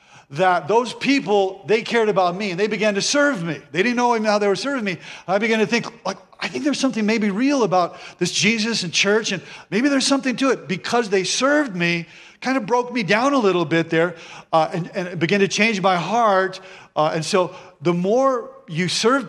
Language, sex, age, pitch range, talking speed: English, male, 50-69, 175-230 Hz, 230 wpm